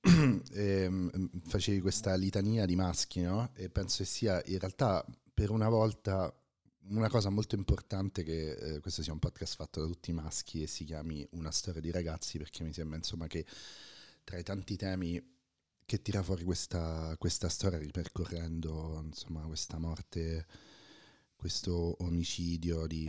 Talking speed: 155 wpm